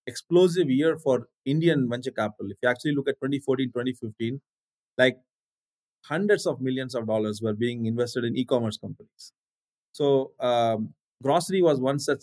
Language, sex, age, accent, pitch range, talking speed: English, male, 30-49, Indian, 120-145 Hz, 150 wpm